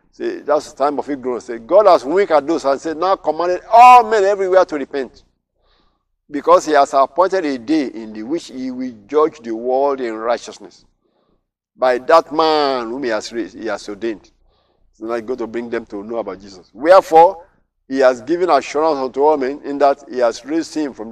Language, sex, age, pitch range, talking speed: English, male, 50-69, 115-155 Hz, 205 wpm